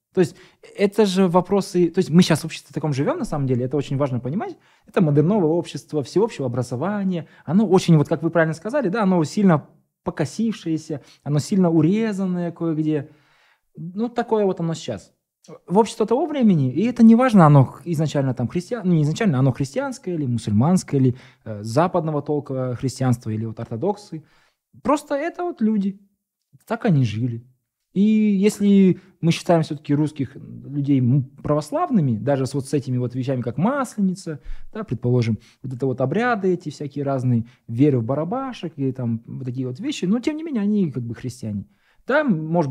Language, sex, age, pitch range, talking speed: Russian, male, 20-39, 130-195 Hz, 175 wpm